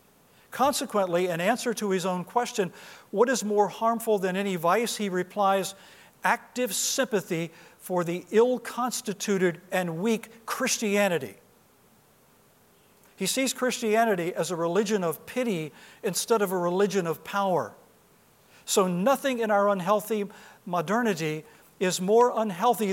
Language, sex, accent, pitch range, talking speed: English, male, American, 180-225 Hz, 125 wpm